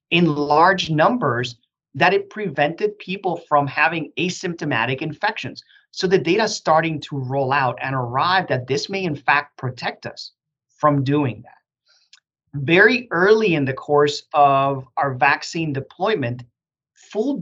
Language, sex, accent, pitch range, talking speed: English, male, American, 140-190 Hz, 140 wpm